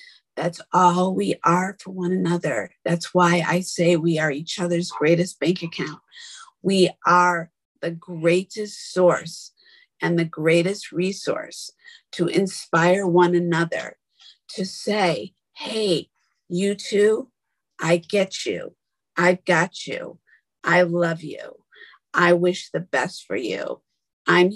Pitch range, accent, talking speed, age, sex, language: 170-200 Hz, American, 125 wpm, 50-69, female, English